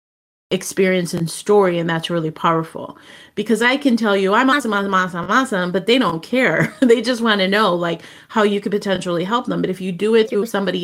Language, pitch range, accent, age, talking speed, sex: English, 175-215 Hz, American, 30-49, 220 wpm, female